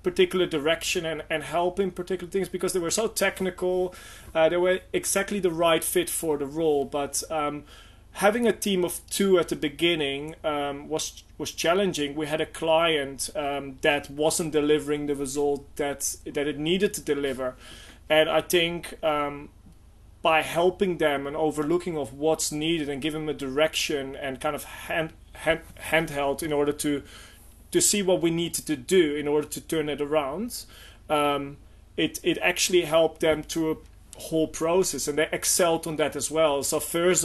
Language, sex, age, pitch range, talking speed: English, male, 30-49, 145-175 Hz, 180 wpm